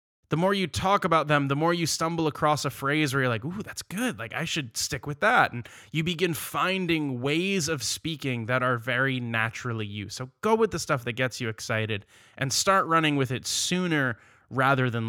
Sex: male